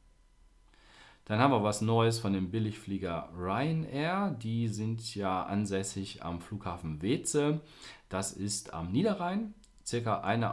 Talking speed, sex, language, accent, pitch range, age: 125 wpm, male, German, German, 90-115 Hz, 40-59